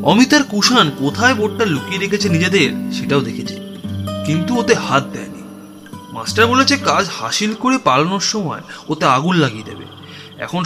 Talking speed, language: 130 wpm, Bengali